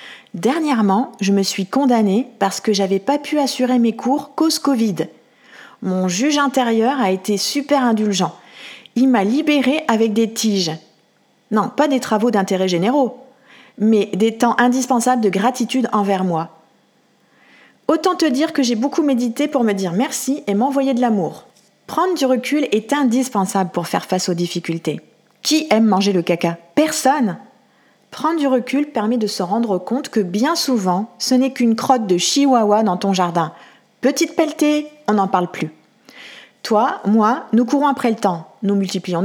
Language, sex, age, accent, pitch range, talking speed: French, female, 40-59, French, 195-270 Hz, 165 wpm